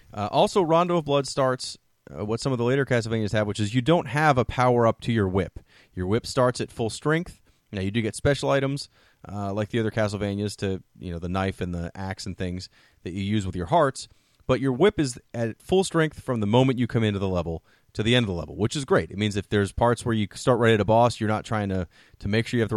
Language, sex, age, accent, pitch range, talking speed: English, male, 30-49, American, 100-135 Hz, 270 wpm